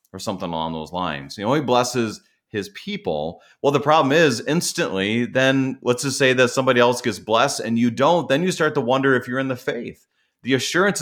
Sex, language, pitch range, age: male, English, 90-130 Hz, 30-49